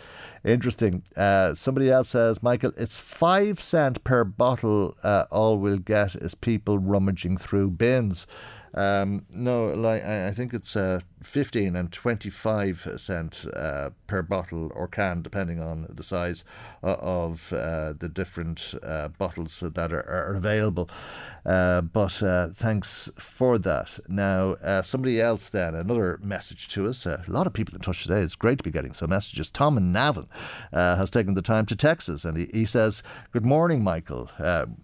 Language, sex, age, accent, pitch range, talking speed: English, male, 50-69, Irish, 95-130 Hz, 165 wpm